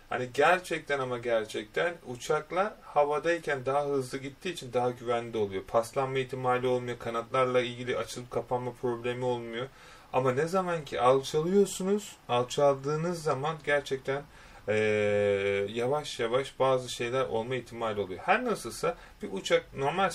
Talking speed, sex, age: 130 wpm, male, 30-49